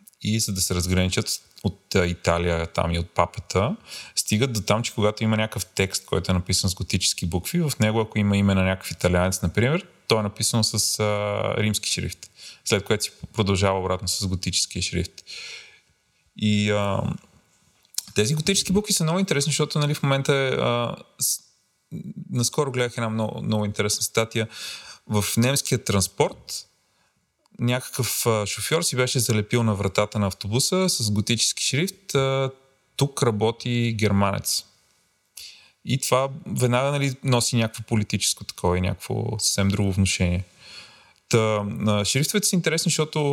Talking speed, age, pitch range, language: 145 wpm, 30-49, 100-130 Hz, Bulgarian